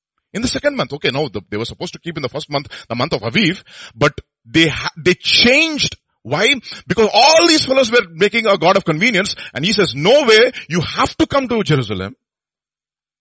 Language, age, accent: English, 50-69, Indian